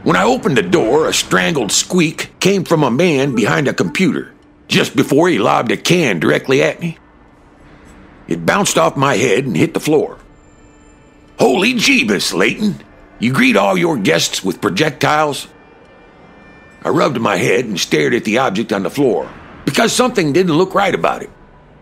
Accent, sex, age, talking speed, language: American, male, 60-79, 170 wpm, English